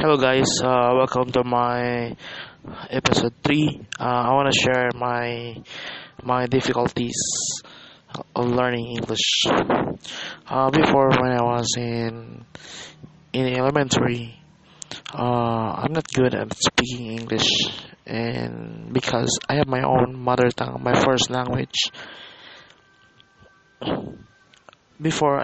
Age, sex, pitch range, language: 20-39, male, 120-135 Hz, English